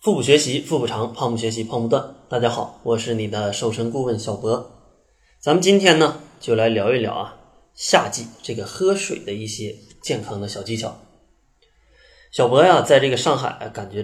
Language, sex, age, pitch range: Chinese, male, 20-39, 105-150 Hz